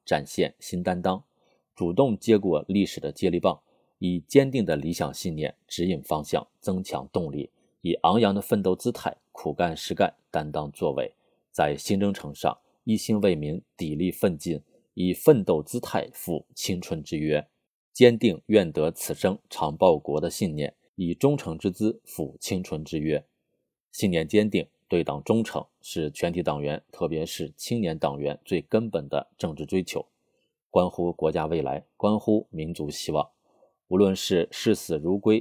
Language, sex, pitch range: Chinese, male, 80-105 Hz